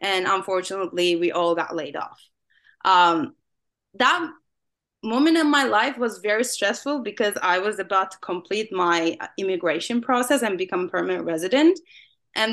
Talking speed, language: 145 wpm, English